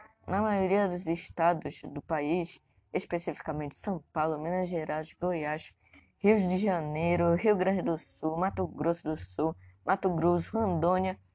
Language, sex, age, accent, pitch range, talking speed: Portuguese, female, 10-29, Brazilian, 150-185 Hz, 135 wpm